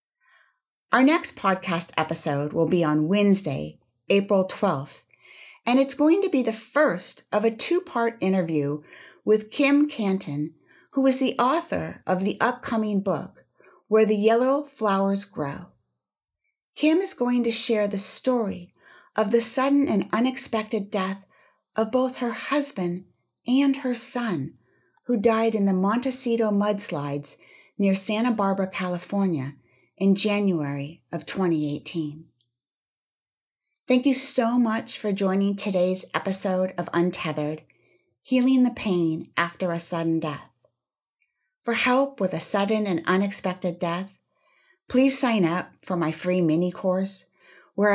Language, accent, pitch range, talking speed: English, American, 170-235 Hz, 130 wpm